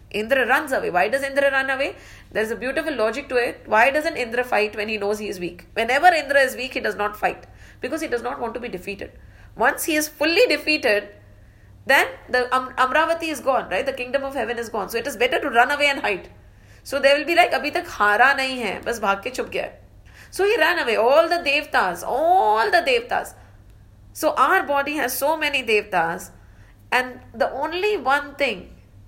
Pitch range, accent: 160-275 Hz, Indian